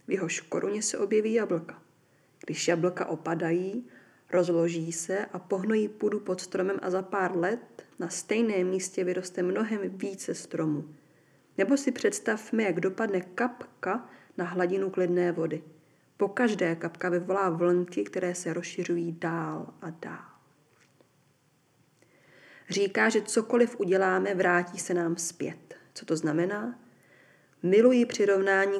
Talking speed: 125 wpm